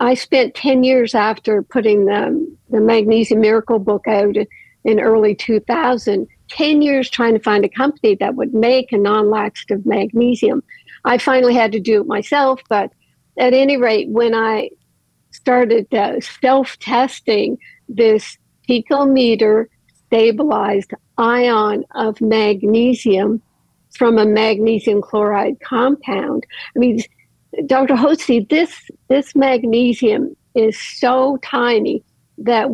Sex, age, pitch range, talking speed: female, 60-79, 215-250 Hz, 120 wpm